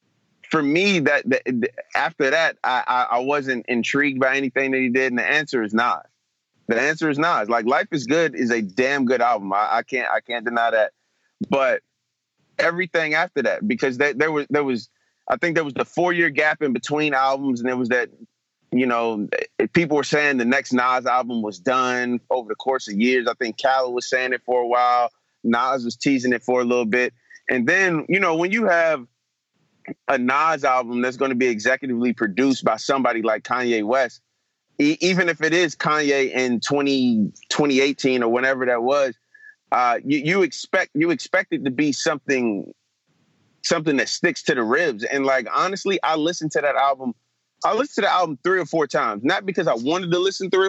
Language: English